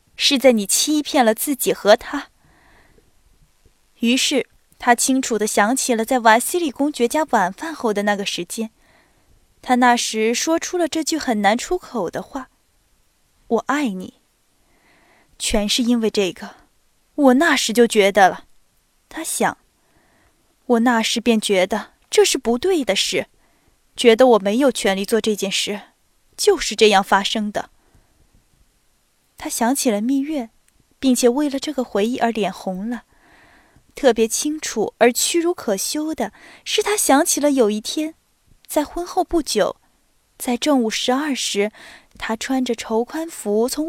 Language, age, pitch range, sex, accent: Chinese, 20-39, 220-295 Hz, female, native